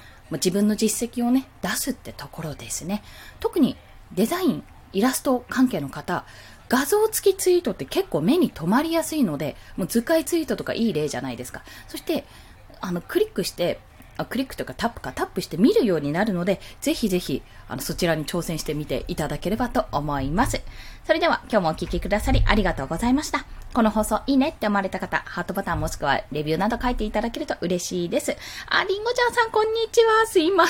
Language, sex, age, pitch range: Japanese, female, 20-39, 175-285 Hz